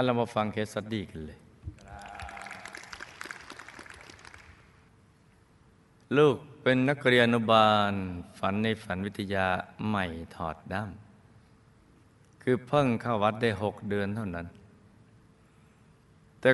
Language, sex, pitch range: Thai, male, 95-120 Hz